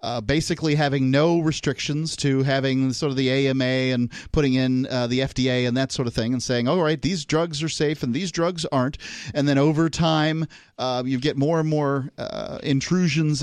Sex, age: male, 40-59